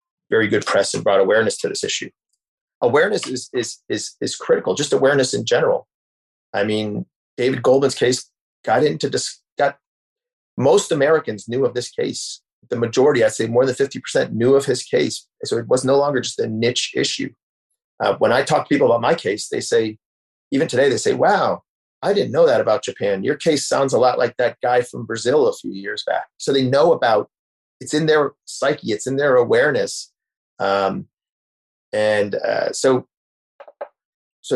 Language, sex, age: English, male, 40-59